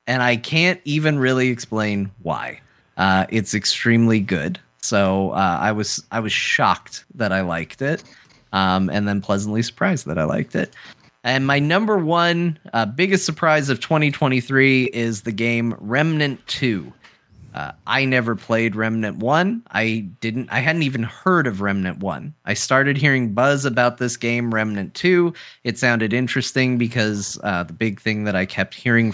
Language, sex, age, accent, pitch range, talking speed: English, male, 30-49, American, 100-130 Hz, 165 wpm